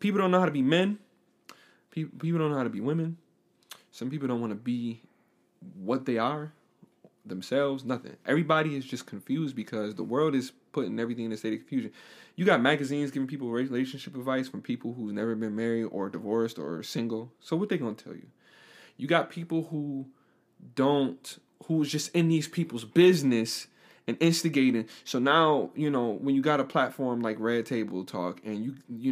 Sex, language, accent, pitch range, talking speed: male, English, American, 115-160 Hz, 190 wpm